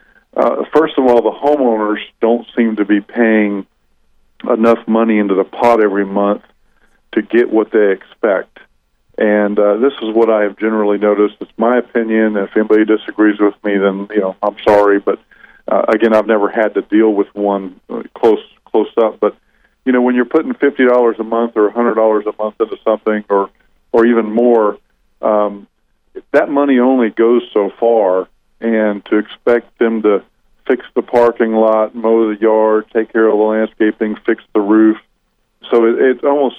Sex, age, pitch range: male, 50-69, 105-115 Hz